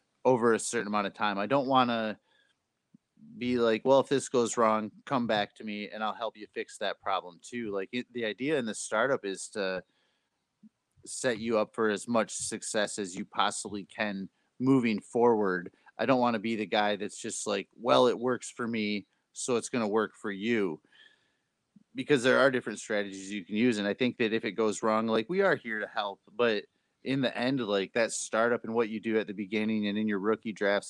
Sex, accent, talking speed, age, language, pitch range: male, American, 220 wpm, 30-49, English, 105-120 Hz